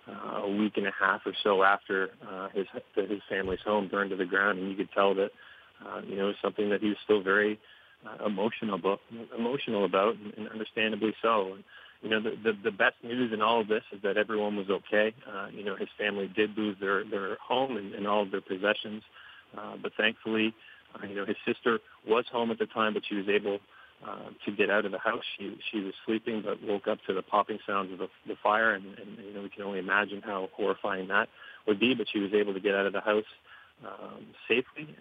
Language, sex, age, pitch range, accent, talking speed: English, male, 40-59, 100-110 Hz, American, 240 wpm